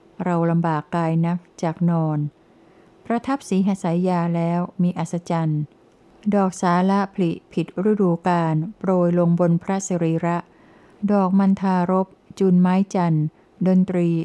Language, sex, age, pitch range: Thai, female, 60-79, 170-190 Hz